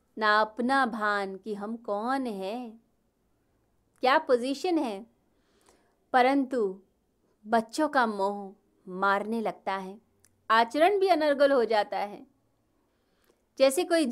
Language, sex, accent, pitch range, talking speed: Hindi, female, native, 205-270 Hz, 105 wpm